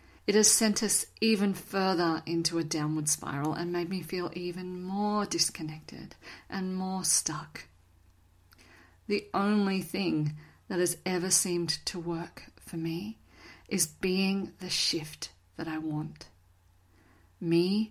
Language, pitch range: English, 155-185 Hz